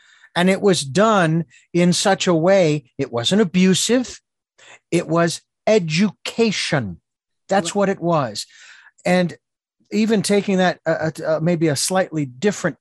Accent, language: American, English